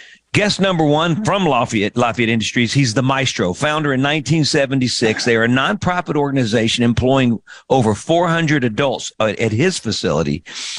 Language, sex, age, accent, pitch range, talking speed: English, male, 50-69, American, 120-150 Hz, 140 wpm